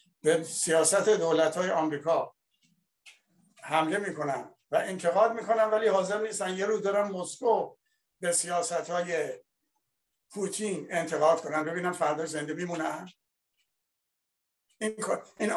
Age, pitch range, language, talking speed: 60-79, 160-200 Hz, Persian, 100 wpm